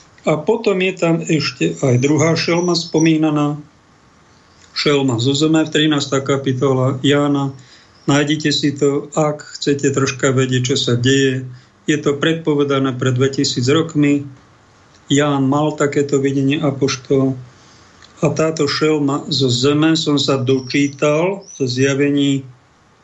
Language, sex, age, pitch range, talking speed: Slovak, male, 50-69, 135-155 Hz, 125 wpm